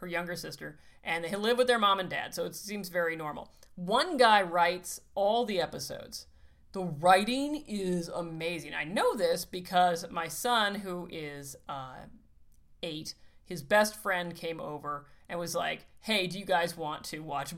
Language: English